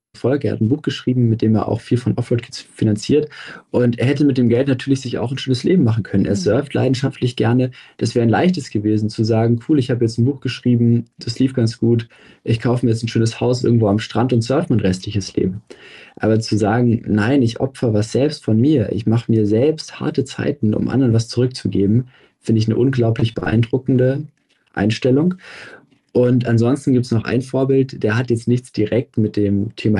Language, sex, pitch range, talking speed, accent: German, male, 110-135 Hz, 210 wpm, German